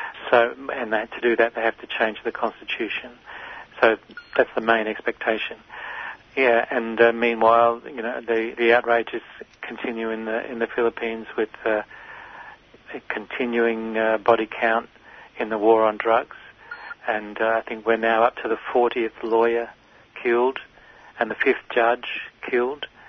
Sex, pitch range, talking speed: male, 110-120 Hz, 160 wpm